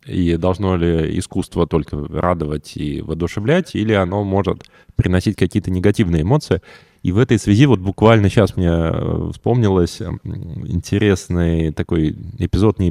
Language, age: Russian, 20-39